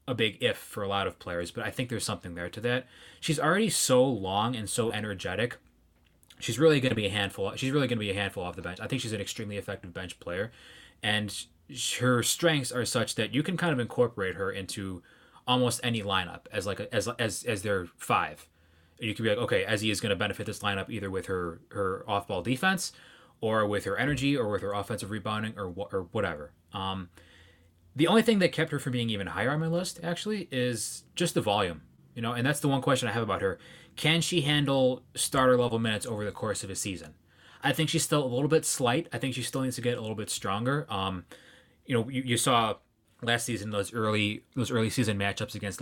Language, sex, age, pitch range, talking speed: English, male, 20-39, 100-130 Hz, 230 wpm